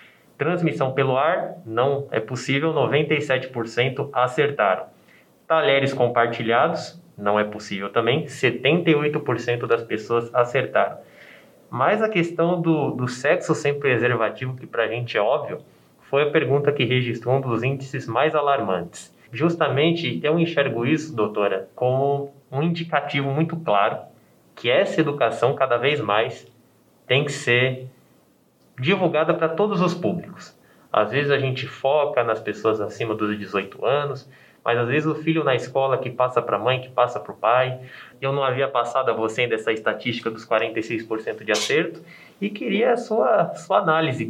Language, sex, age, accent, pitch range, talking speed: Portuguese, male, 20-39, Brazilian, 120-155 Hz, 155 wpm